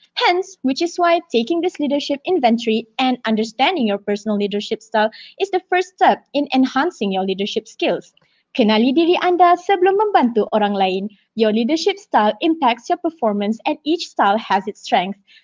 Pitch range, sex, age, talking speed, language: 225-340 Hz, female, 20-39, 165 wpm, English